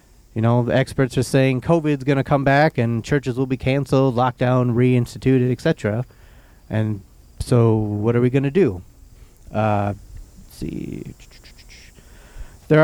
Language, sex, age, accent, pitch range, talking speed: English, male, 30-49, American, 115-150 Hz, 135 wpm